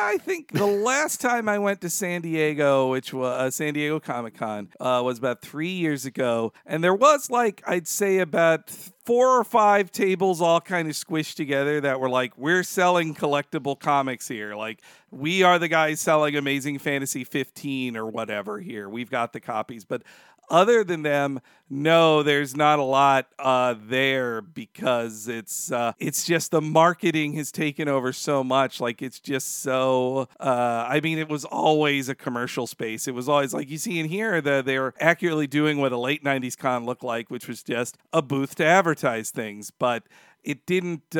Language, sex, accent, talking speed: English, male, American, 190 wpm